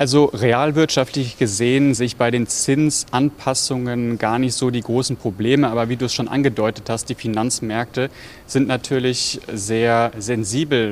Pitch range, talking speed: 115-130 Hz, 145 wpm